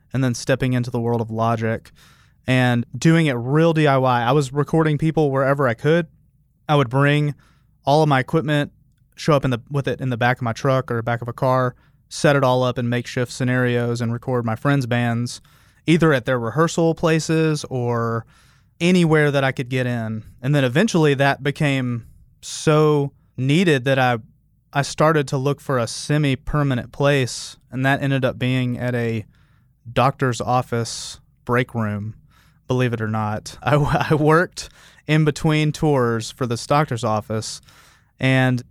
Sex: male